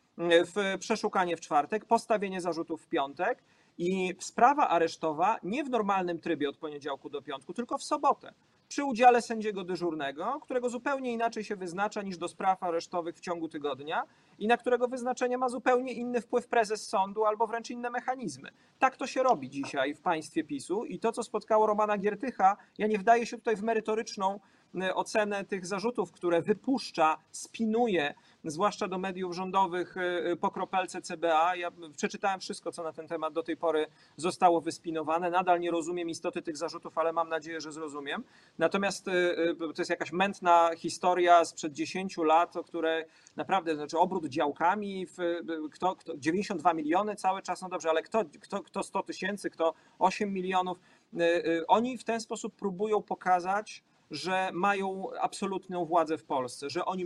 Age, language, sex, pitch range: 40-59, Polish, male, 170-215 Hz